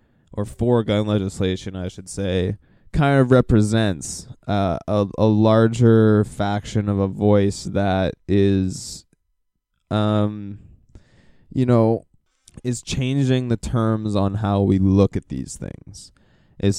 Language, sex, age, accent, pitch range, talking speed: English, male, 20-39, American, 95-105 Hz, 125 wpm